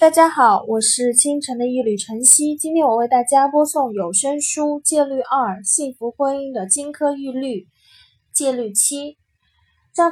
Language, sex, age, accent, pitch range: Chinese, female, 10-29, native, 220-280 Hz